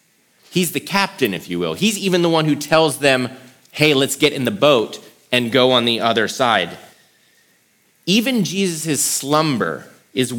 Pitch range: 115-155 Hz